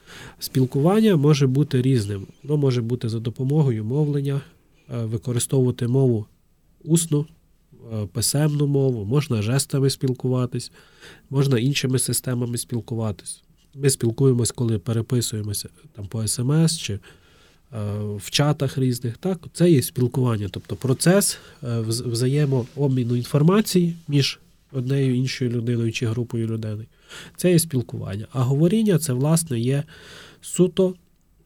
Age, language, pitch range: 30-49, Ukrainian, 115-145 Hz